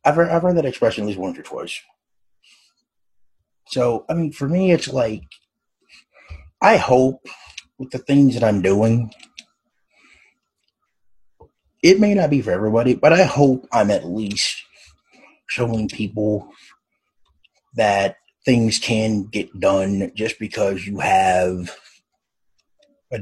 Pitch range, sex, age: 95-125 Hz, male, 30-49